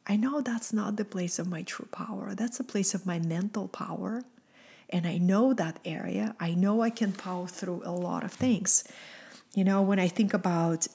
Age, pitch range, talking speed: 30-49, 175-215 Hz, 210 wpm